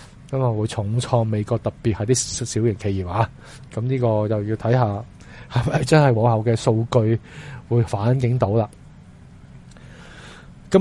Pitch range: 110-135 Hz